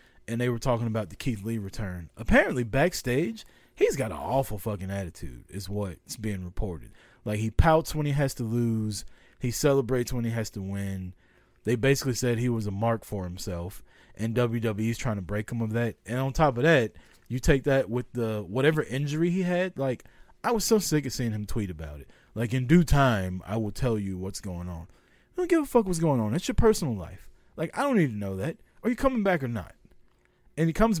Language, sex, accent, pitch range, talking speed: English, male, American, 105-165 Hz, 225 wpm